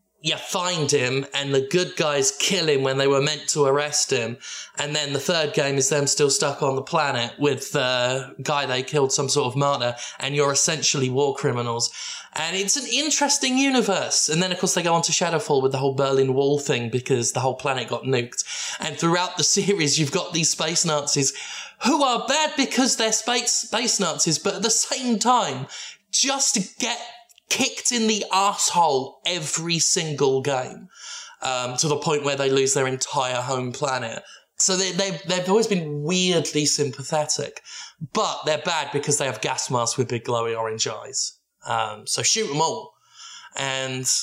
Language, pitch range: English, 135-195 Hz